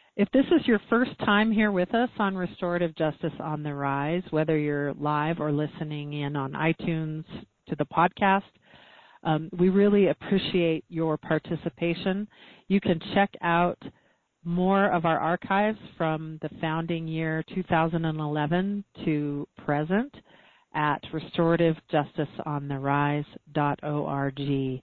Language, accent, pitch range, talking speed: English, American, 155-195 Hz, 120 wpm